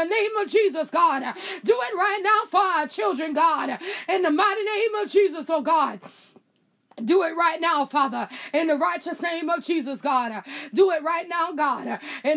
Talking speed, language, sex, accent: 195 wpm, English, female, American